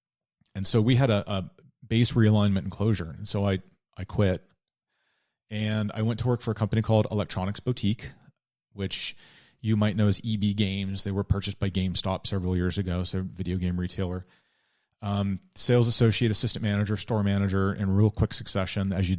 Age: 30-49